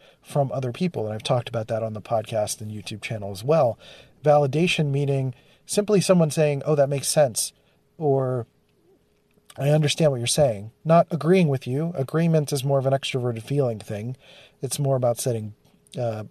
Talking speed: 175 wpm